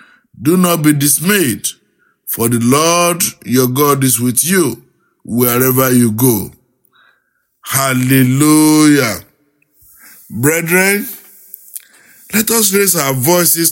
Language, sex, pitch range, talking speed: English, male, 145-185 Hz, 95 wpm